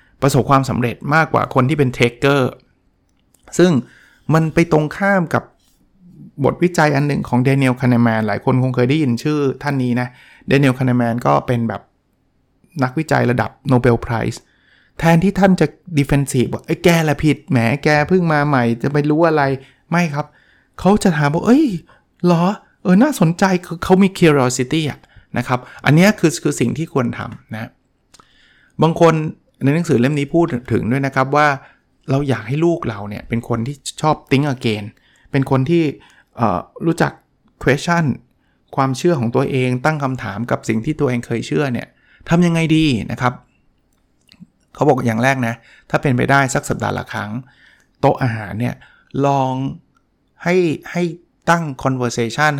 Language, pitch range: Thai, 125-160 Hz